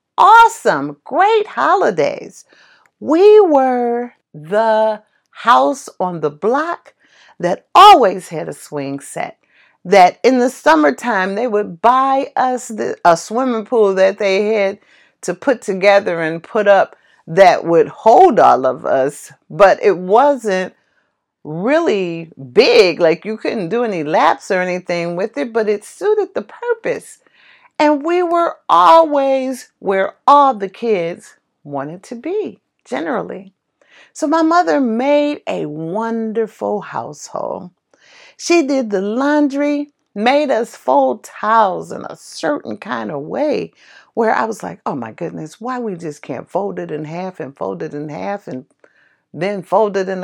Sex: female